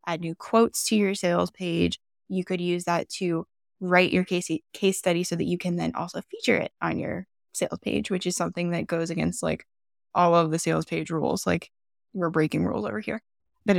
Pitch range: 170-185 Hz